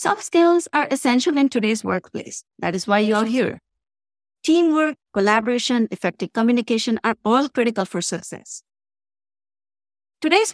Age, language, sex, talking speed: 50-69, English, female, 130 wpm